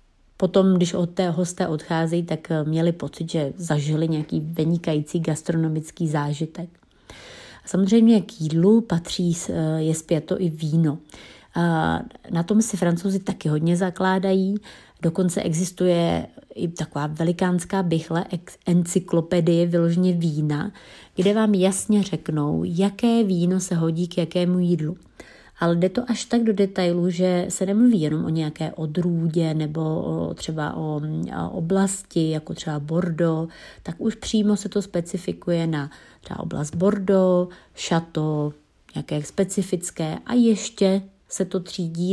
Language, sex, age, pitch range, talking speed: Czech, female, 30-49, 160-190 Hz, 130 wpm